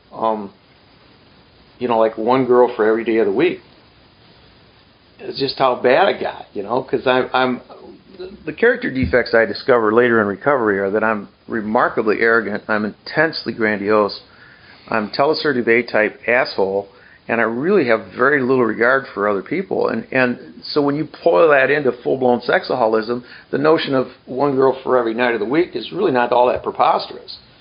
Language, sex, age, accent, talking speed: English, male, 50-69, American, 175 wpm